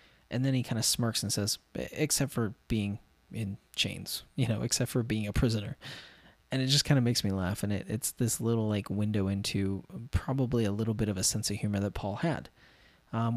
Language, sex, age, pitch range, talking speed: English, male, 20-39, 100-130 Hz, 220 wpm